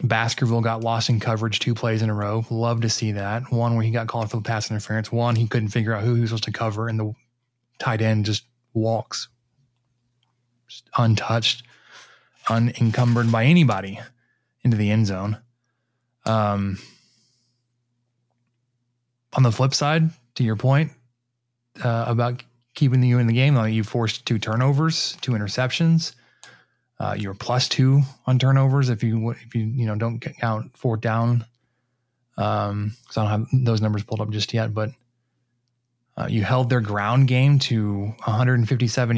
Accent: American